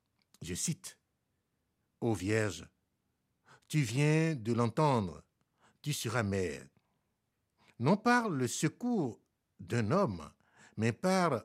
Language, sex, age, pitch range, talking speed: French, male, 60-79, 110-160 Hz, 100 wpm